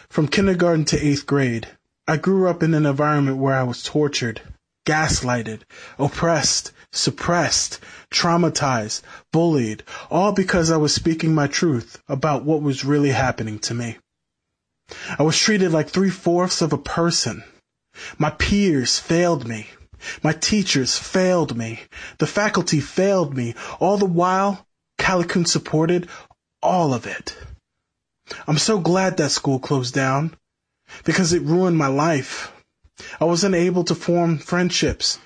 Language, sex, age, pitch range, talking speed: English, male, 20-39, 140-180 Hz, 135 wpm